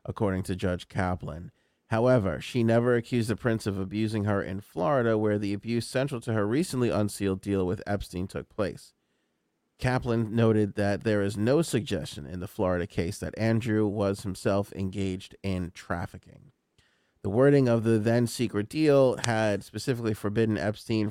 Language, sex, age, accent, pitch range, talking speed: English, male, 30-49, American, 100-120 Hz, 160 wpm